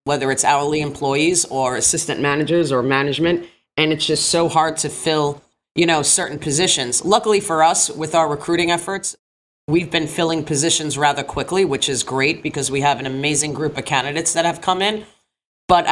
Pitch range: 135-165 Hz